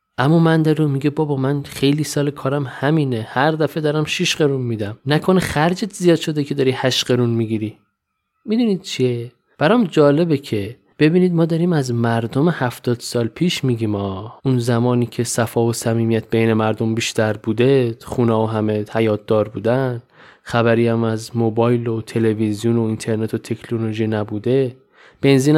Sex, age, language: male, 20-39, Persian